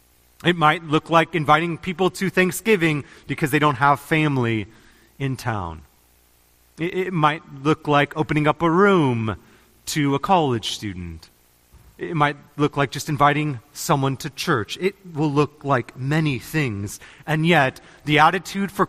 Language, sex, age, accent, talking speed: English, male, 30-49, American, 150 wpm